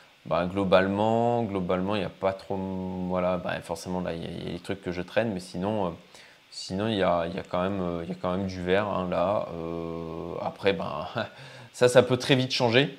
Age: 20-39